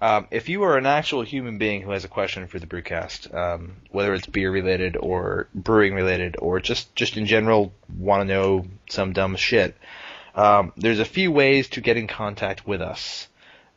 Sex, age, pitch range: male, 20-39, 95-115 Hz